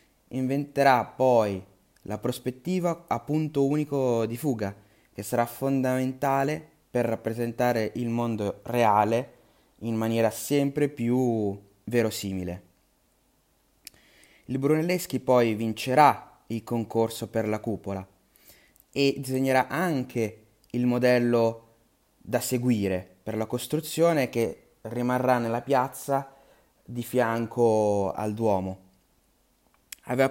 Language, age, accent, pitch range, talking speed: Italian, 20-39, native, 110-130 Hz, 100 wpm